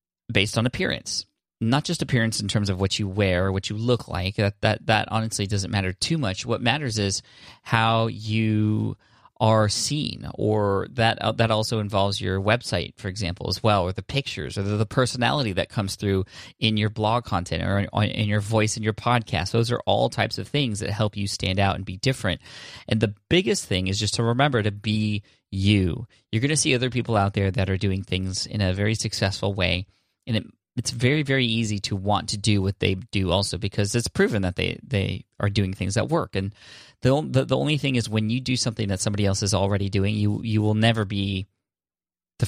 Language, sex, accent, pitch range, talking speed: English, male, American, 100-115 Hz, 220 wpm